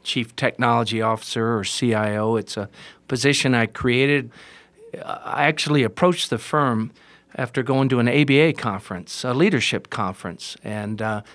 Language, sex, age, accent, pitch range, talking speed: English, male, 50-69, American, 115-160 Hz, 135 wpm